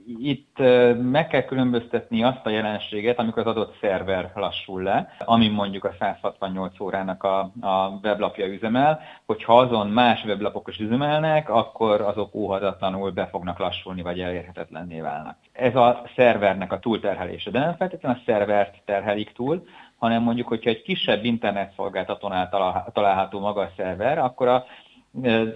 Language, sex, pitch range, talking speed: Hungarian, male, 95-120 Hz, 145 wpm